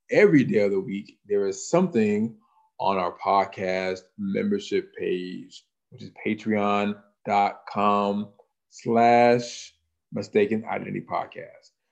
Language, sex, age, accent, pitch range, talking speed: English, male, 20-39, American, 100-130 Hz, 90 wpm